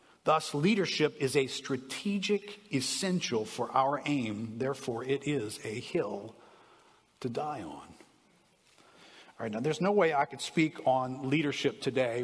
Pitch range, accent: 120-155 Hz, American